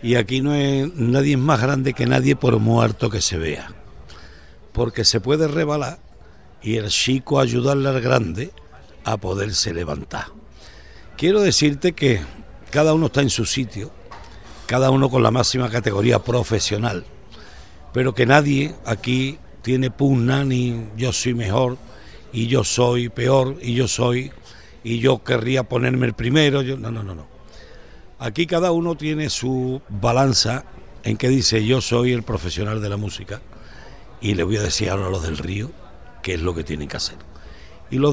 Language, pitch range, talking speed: Spanish, 105-135 Hz, 170 wpm